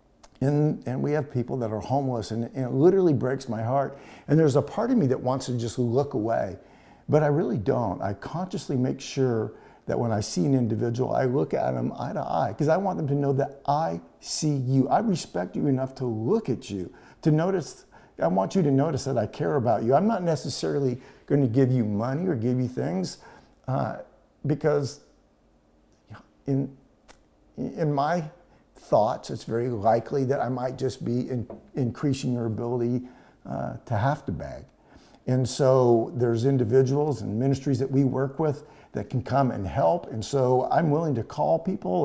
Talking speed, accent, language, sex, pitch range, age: 195 wpm, American, English, male, 115-140 Hz, 50-69